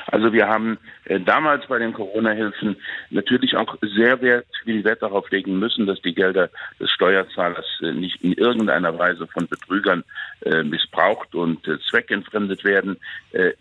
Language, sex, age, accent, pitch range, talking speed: German, male, 60-79, German, 90-110 Hz, 155 wpm